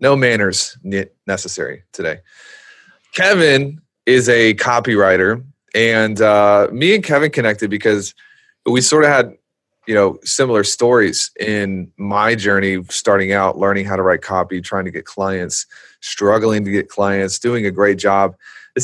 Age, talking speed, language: 30-49, 145 wpm, English